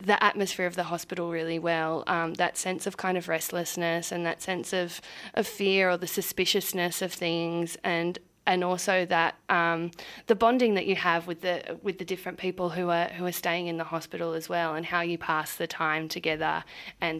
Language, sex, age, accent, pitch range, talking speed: English, female, 20-39, Australian, 170-195 Hz, 205 wpm